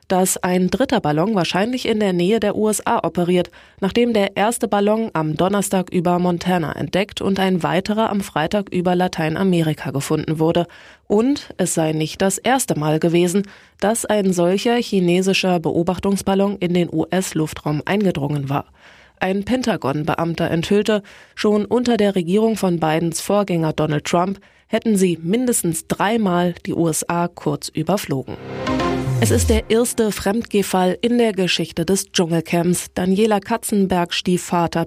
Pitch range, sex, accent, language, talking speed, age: 170-210 Hz, female, German, German, 140 wpm, 20-39